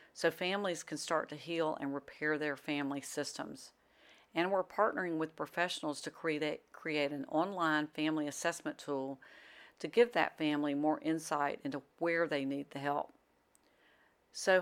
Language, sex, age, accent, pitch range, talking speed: English, female, 50-69, American, 145-170 Hz, 150 wpm